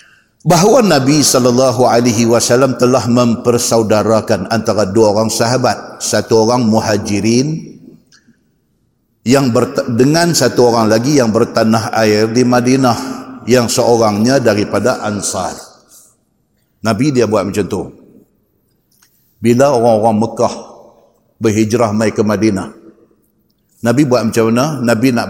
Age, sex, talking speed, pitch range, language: 50-69, male, 105 wpm, 110-125 Hz, Malay